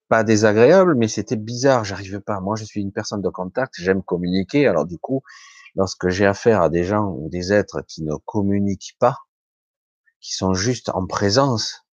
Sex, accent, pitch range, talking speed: male, French, 95-135 Hz, 185 wpm